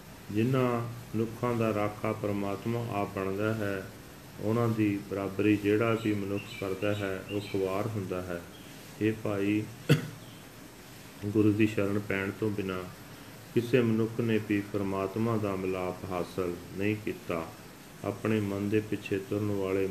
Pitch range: 95-110 Hz